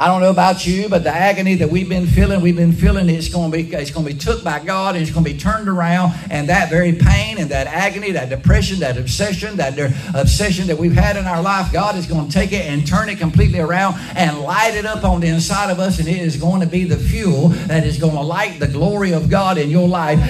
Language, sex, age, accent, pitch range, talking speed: English, male, 60-79, American, 155-195 Hz, 270 wpm